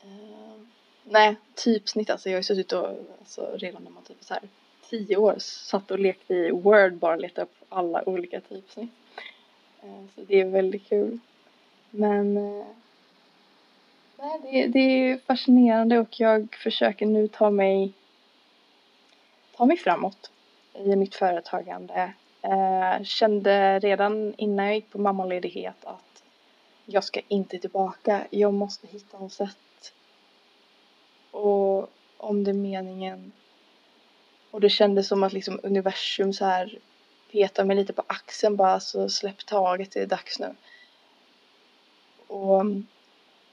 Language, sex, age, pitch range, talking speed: Swedish, female, 20-39, 195-220 Hz, 130 wpm